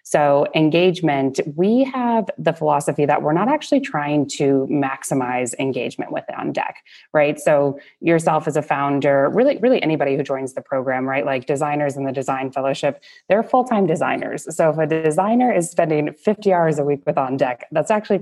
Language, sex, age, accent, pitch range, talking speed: English, female, 20-39, American, 140-170 Hz, 180 wpm